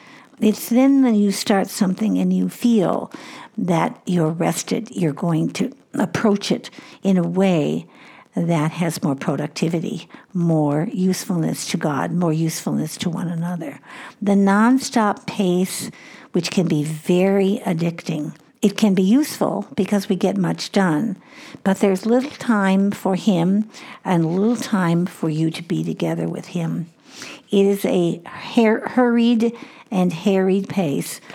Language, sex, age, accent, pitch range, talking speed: English, female, 60-79, American, 175-230 Hz, 140 wpm